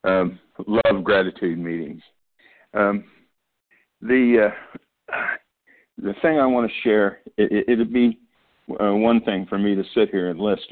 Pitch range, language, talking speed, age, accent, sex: 90-115 Hz, English, 150 wpm, 50-69, American, male